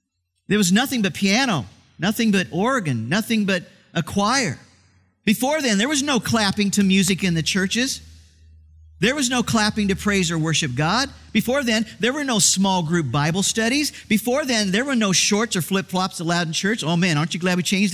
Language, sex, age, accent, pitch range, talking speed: English, male, 50-69, American, 165-230 Hz, 195 wpm